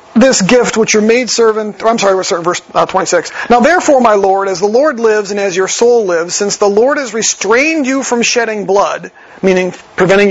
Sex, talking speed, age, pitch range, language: male, 190 wpm, 40-59, 200-240 Hz, English